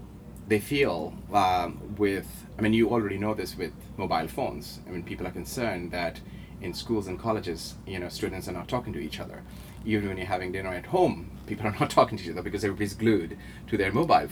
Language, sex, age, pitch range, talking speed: English, male, 30-49, 95-115 Hz, 220 wpm